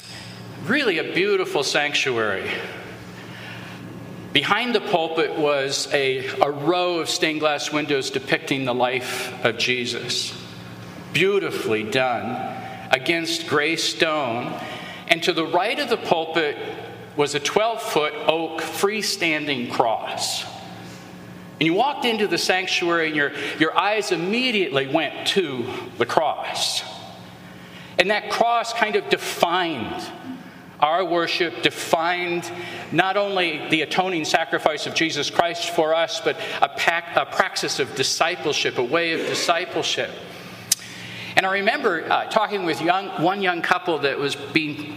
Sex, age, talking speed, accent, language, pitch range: male, 50-69, 125 wpm, American, English, 120-180 Hz